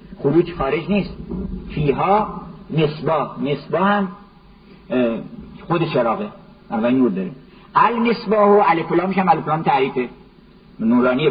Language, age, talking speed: Persian, 50-69, 105 wpm